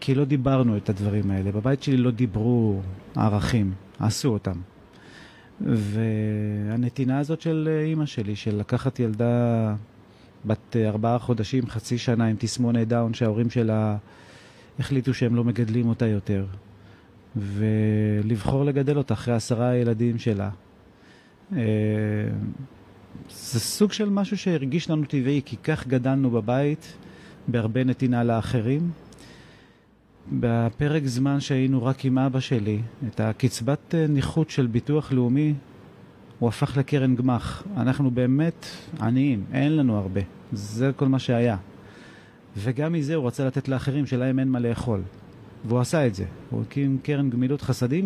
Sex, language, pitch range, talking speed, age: male, Hebrew, 110-135 Hz, 130 wpm, 30-49